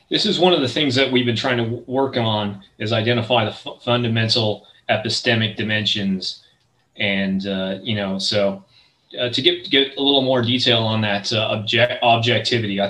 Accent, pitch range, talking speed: American, 110-135 Hz, 180 wpm